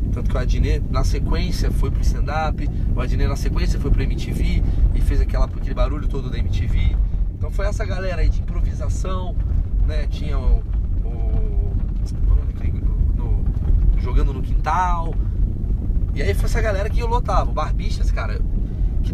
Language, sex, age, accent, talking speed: Portuguese, male, 20-39, Brazilian, 155 wpm